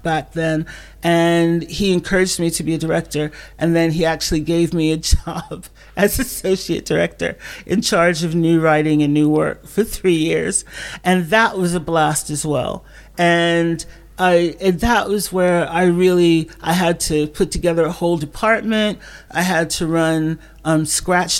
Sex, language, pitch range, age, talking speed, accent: male, English, 160-180 Hz, 40-59, 170 wpm, American